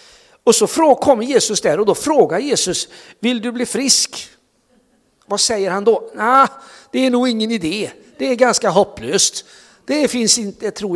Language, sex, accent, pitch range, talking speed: Swedish, male, native, 175-235 Hz, 185 wpm